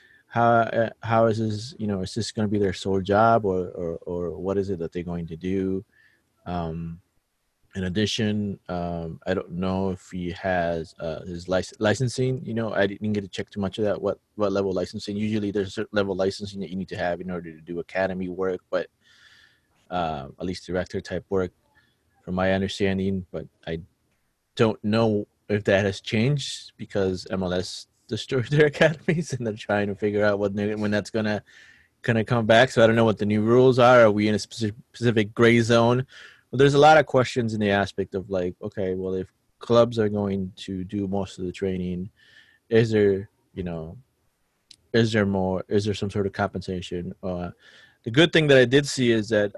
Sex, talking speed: male, 205 wpm